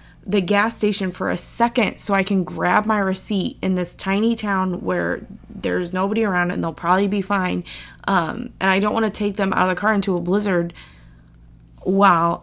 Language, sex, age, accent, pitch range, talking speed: English, female, 20-39, American, 180-220 Hz, 200 wpm